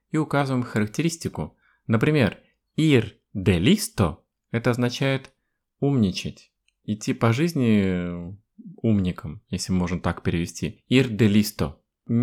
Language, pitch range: Russian, 100-125 Hz